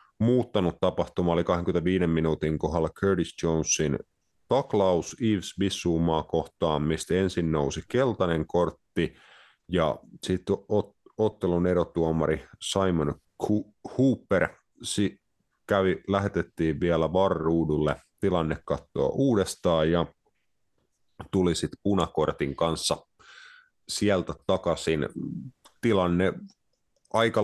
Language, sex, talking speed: Finnish, male, 85 wpm